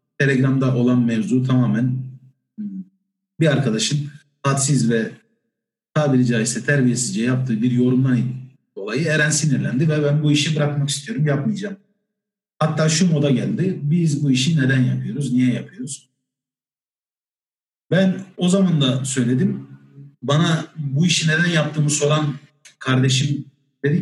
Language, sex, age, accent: Turkish, male, 50-69, native